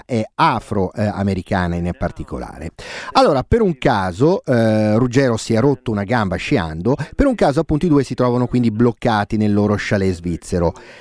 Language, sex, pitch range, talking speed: Italian, male, 100-145 Hz, 165 wpm